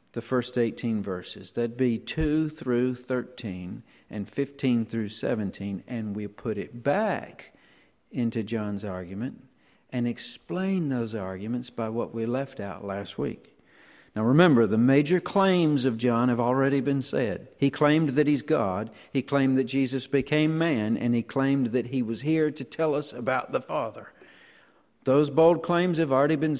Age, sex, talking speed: 50-69, male, 165 wpm